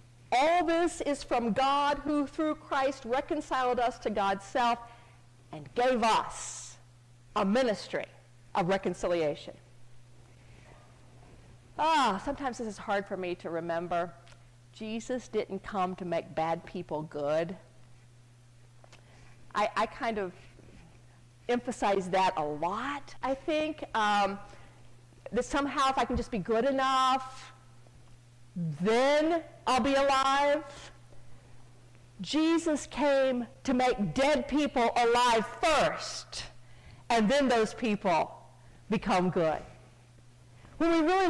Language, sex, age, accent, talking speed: English, female, 50-69, American, 115 wpm